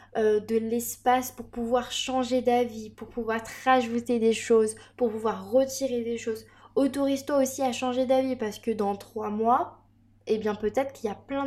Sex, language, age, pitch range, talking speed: female, French, 20-39, 215-260 Hz, 185 wpm